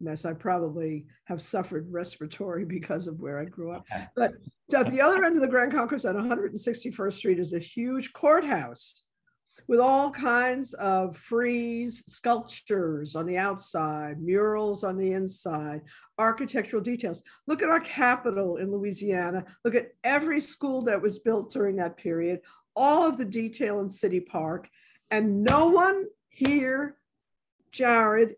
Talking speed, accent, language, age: 150 wpm, American, English, 50-69